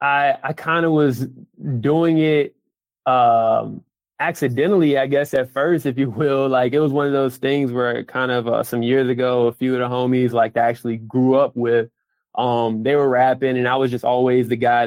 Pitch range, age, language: 125-140 Hz, 20-39, English